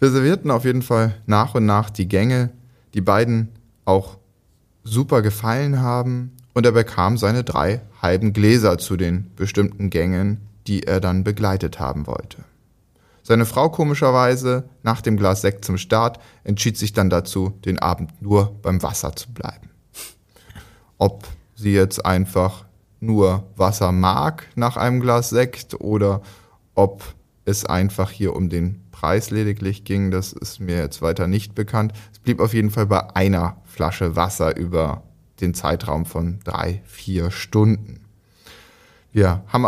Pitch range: 95-115 Hz